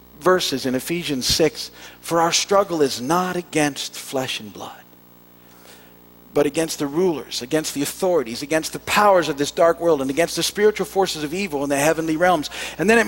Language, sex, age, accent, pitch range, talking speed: English, male, 50-69, American, 115-185 Hz, 190 wpm